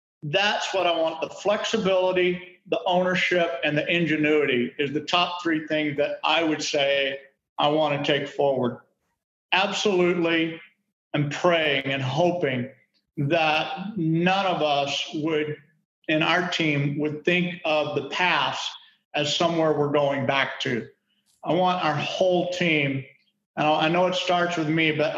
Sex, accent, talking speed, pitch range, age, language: male, American, 150 wpm, 150-180 Hz, 50-69, English